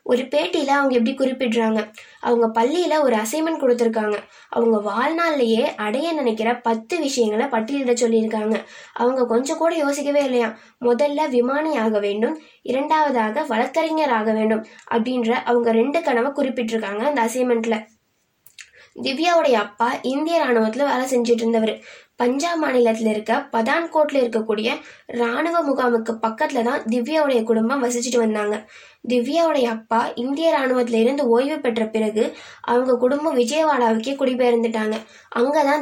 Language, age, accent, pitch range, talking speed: Tamil, 20-39, native, 230-285 Hz, 115 wpm